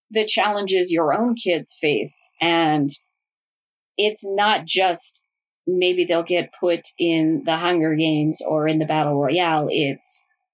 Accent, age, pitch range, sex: American, 30-49, 155-195 Hz, female